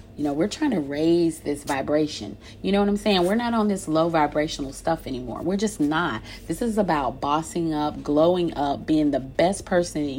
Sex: female